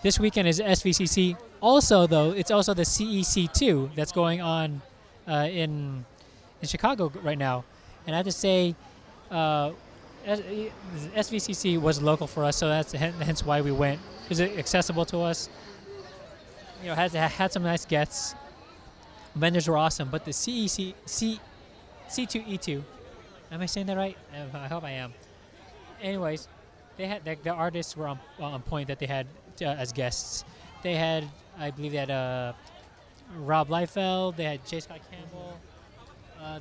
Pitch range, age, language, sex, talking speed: 145-185 Hz, 20-39, English, male, 160 wpm